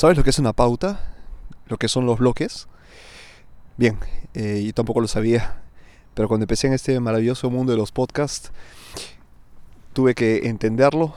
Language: Spanish